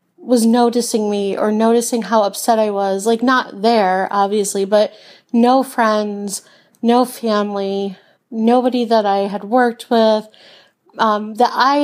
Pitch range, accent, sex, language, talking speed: 210-255 Hz, American, female, English, 135 wpm